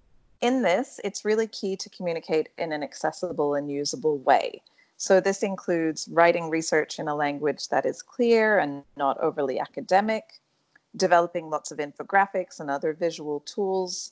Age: 40-59